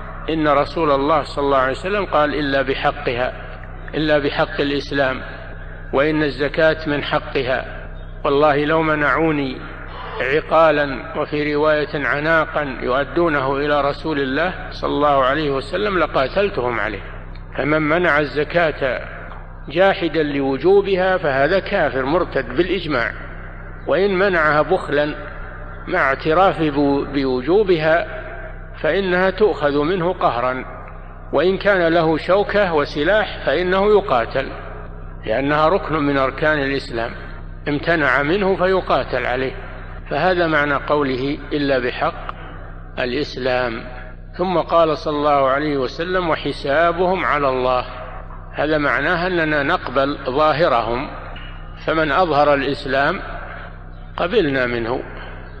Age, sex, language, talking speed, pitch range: 60-79, male, Arabic, 100 wpm, 125-160 Hz